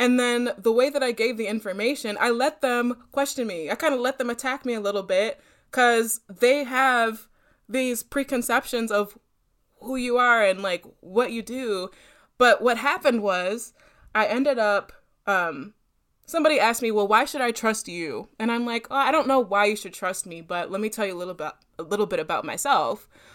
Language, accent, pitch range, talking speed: English, American, 195-245 Hz, 200 wpm